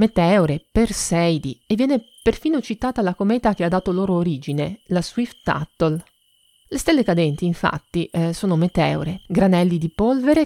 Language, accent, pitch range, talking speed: Italian, native, 170-220 Hz, 150 wpm